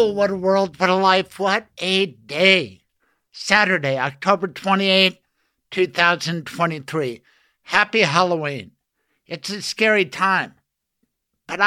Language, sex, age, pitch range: English, male, 60-79, 165-195 Hz